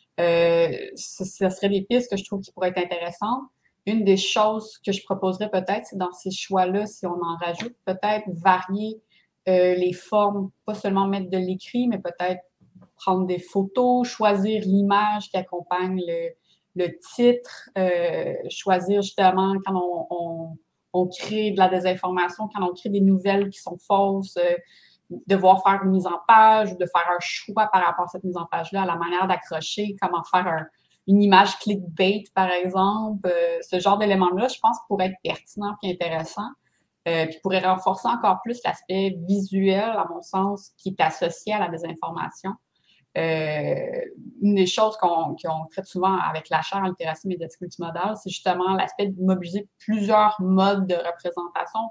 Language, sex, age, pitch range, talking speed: English, female, 30-49, 180-205 Hz, 170 wpm